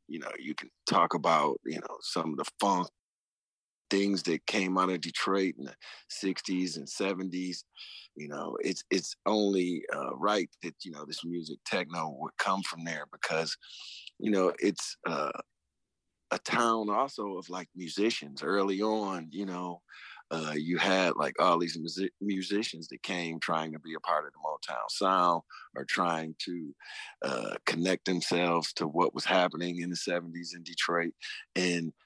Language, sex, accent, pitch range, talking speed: English, male, American, 85-95 Hz, 165 wpm